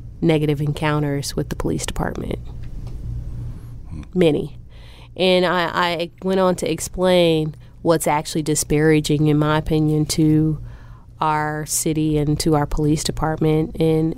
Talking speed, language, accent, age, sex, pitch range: 125 wpm, English, American, 30-49, female, 150-170 Hz